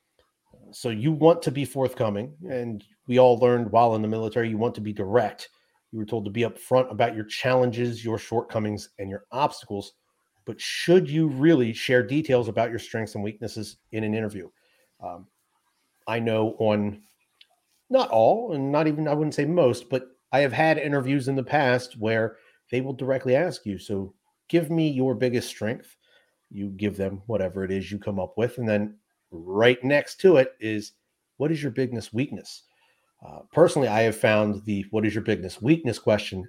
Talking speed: 185 wpm